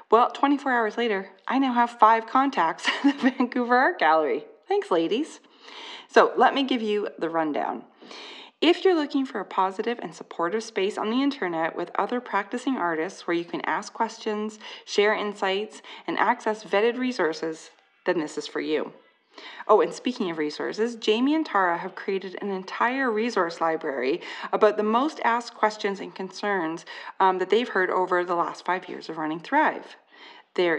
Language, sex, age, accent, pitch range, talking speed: English, female, 30-49, American, 180-255 Hz, 175 wpm